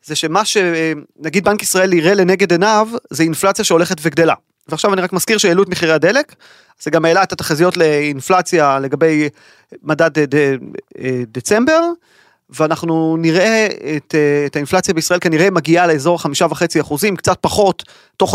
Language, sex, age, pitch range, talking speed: Hebrew, male, 30-49, 155-200 Hz, 150 wpm